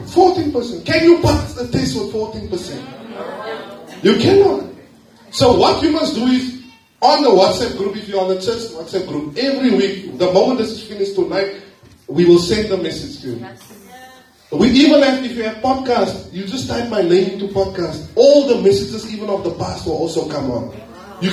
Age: 30-49